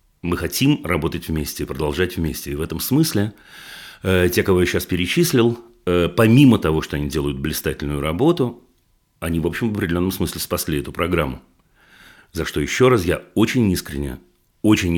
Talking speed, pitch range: 155 wpm, 85-125 Hz